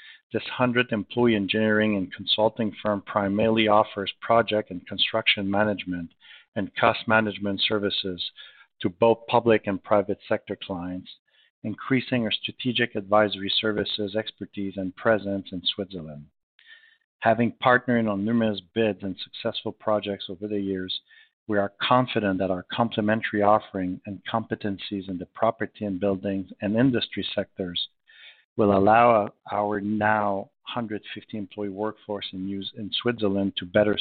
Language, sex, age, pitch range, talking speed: English, male, 50-69, 100-115 Hz, 130 wpm